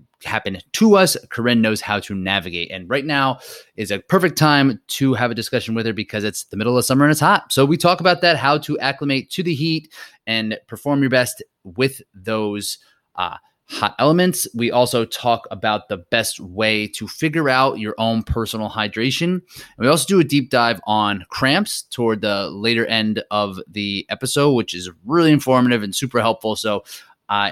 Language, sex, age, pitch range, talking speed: English, male, 20-39, 105-145 Hz, 195 wpm